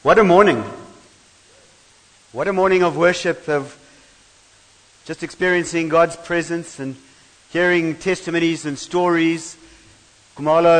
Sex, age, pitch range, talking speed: male, 50-69, 130-180 Hz, 105 wpm